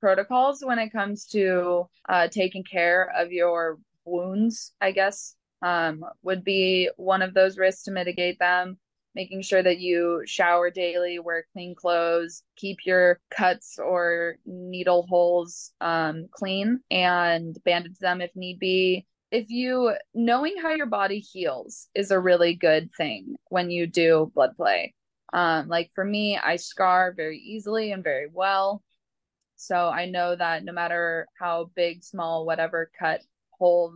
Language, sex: English, female